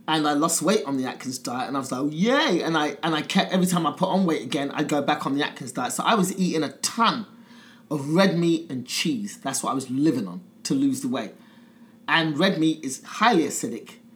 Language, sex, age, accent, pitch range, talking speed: English, male, 30-49, British, 145-215 Hz, 255 wpm